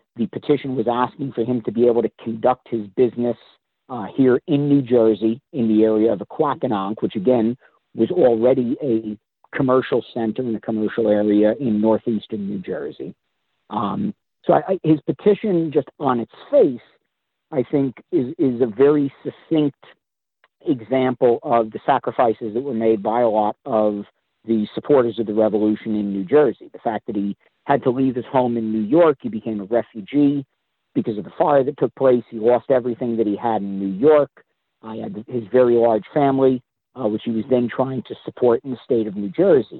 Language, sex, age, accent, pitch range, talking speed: English, male, 50-69, American, 110-135 Hz, 190 wpm